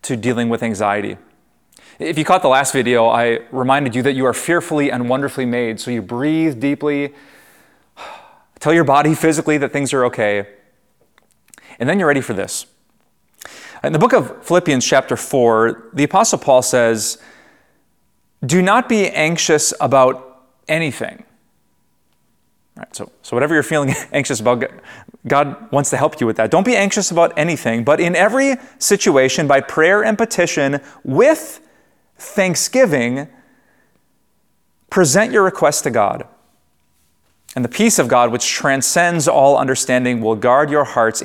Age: 30-49